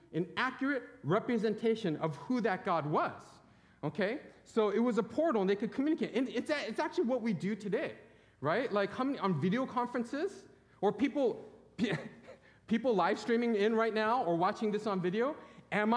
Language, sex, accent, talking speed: English, male, American, 180 wpm